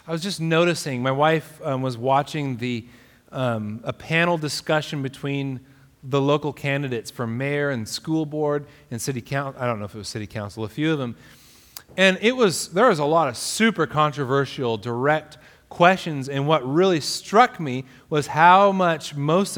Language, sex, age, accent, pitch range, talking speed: English, male, 30-49, American, 130-175 Hz, 180 wpm